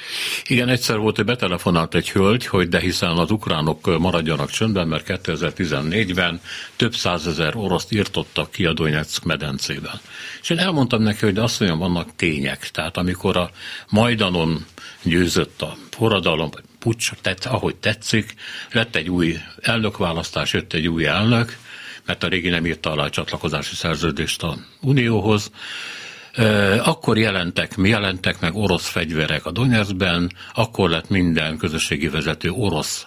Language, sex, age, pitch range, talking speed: Hungarian, male, 60-79, 85-110 Hz, 140 wpm